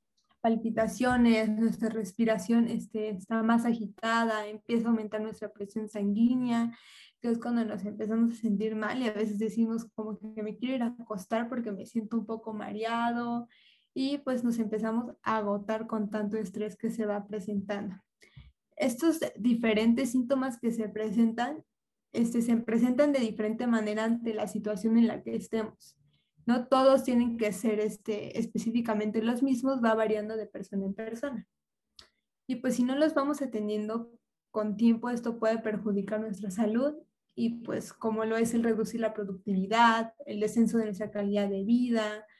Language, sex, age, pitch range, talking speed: Spanish, female, 20-39, 215-235 Hz, 160 wpm